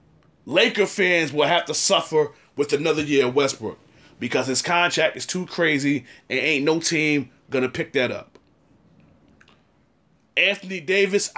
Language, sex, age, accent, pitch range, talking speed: English, male, 30-49, American, 145-205 Hz, 150 wpm